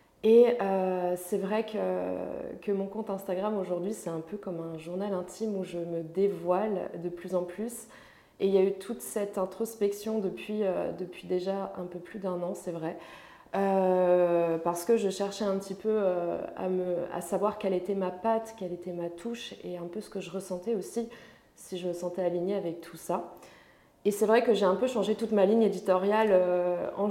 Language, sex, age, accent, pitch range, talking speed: French, female, 20-39, French, 175-200 Hz, 205 wpm